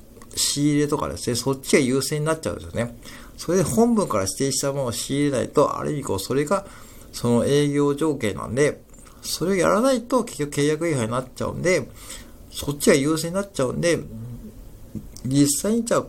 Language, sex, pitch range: Japanese, male, 105-145 Hz